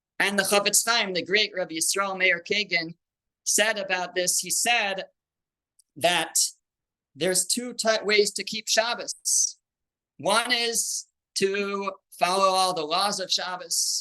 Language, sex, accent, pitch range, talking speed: English, male, American, 175-225 Hz, 135 wpm